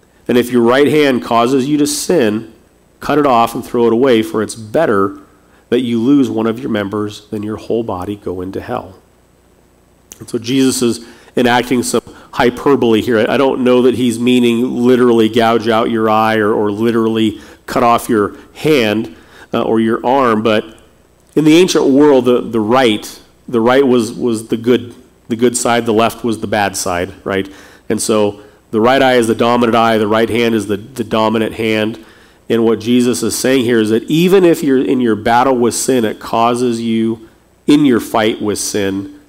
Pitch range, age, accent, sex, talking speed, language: 105-120 Hz, 40-59, American, male, 195 wpm, English